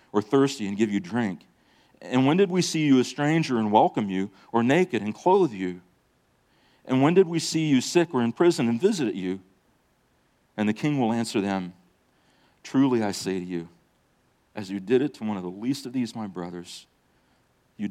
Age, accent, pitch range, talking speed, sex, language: 40-59, American, 95-130 Hz, 200 wpm, male, English